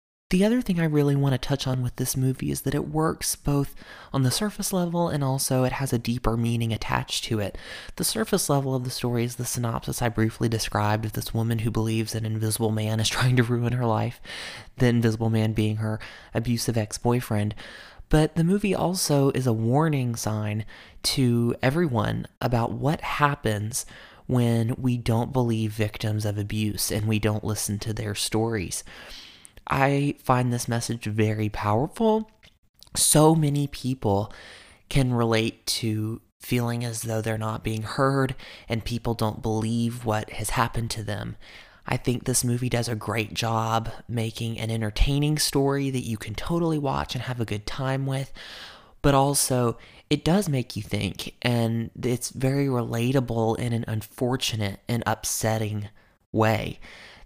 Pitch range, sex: 110-135 Hz, male